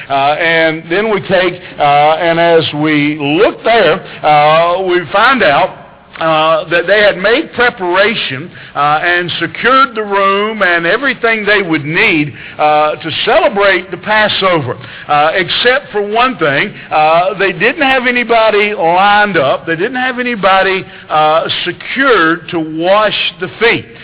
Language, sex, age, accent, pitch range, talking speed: English, male, 60-79, American, 160-205 Hz, 145 wpm